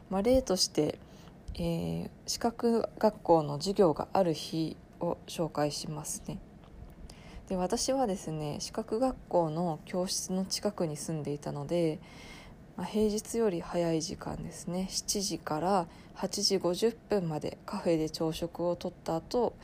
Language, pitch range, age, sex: Japanese, 160-200 Hz, 20-39, female